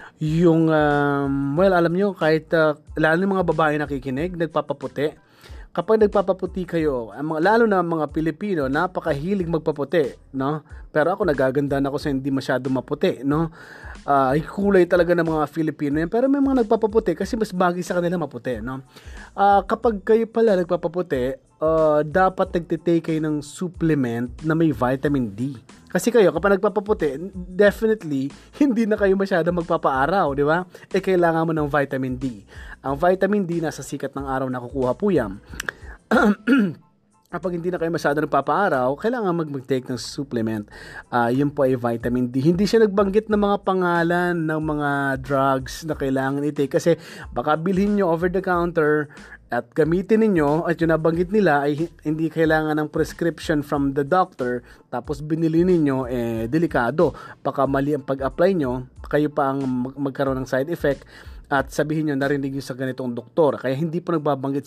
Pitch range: 135-180 Hz